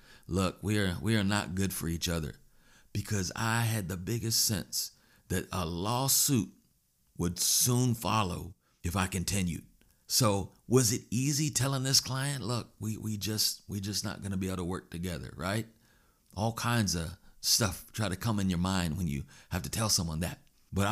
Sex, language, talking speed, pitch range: male, English, 185 wpm, 95-120 Hz